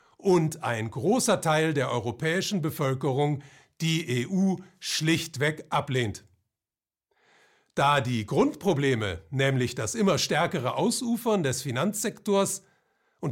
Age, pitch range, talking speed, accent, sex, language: 50-69, 135-190 Hz, 100 wpm, German, male, German